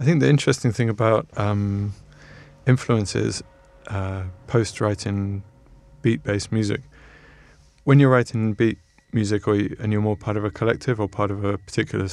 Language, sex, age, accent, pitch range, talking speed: English, male, 20-39, British, 100-115 Hz, 165 wpm